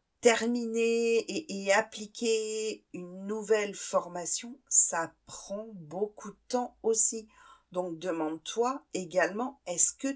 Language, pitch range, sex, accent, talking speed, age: French, 185-235 Hz, female, French, 105 wpm, 50-69